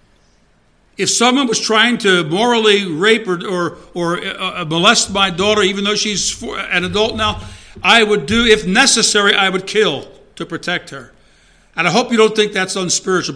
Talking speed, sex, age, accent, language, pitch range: 180 wpm, male, 60-79, American, English, 145-205 Hz